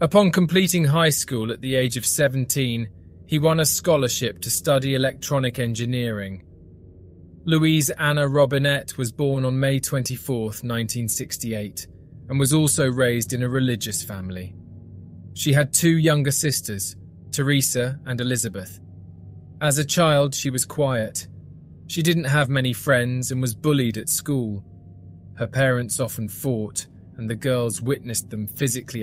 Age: 20-39